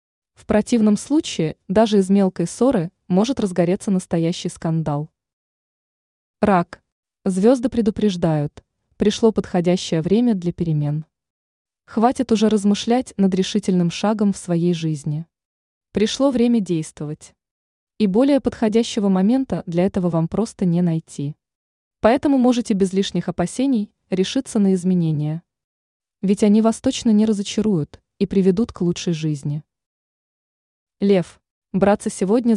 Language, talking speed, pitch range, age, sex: Russian, 115 wpm, 170-220 Hz, 20-39, female